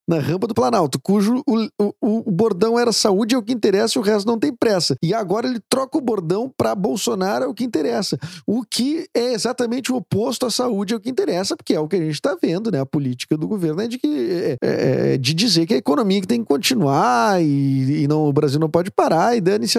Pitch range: 145-220 Hz